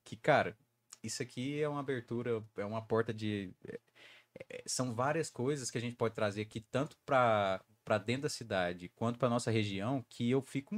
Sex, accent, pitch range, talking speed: male, Brazilian, 115-170 Hz, 190 wpm